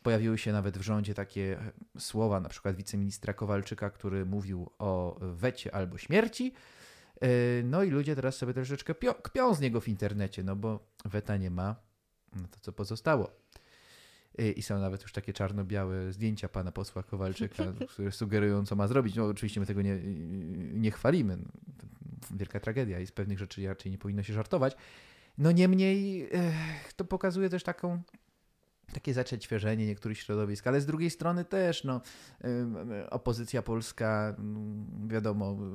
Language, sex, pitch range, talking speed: Polish, male, 100-125 Hz, 150 wpm